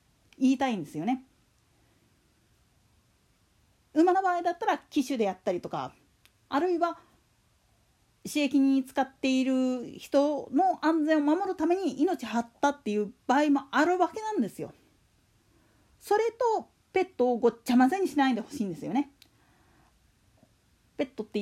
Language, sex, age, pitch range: Japanese, female, 40-59, 230-345 Hz